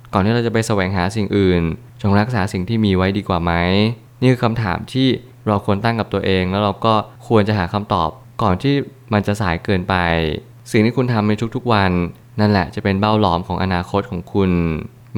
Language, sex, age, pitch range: Thai, male, 20-39, 95-115 Hz